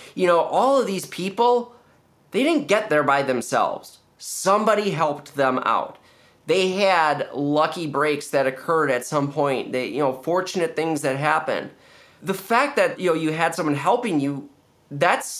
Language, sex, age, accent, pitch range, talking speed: English, male, 30-49, American, 145-200 Hz, 170 wpm